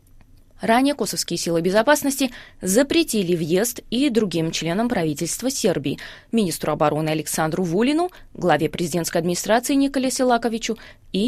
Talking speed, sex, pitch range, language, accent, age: 115 wpm, female, 165-235 Hz, Russian, native, 20-39